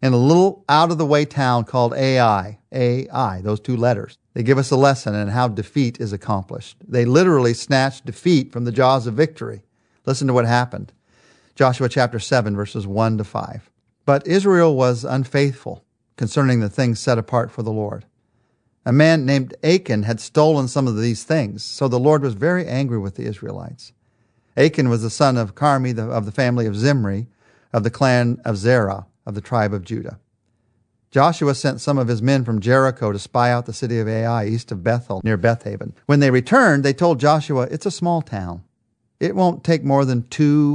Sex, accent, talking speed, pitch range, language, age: male, American, 190 wpm, 115-140 Hz, English, 50-69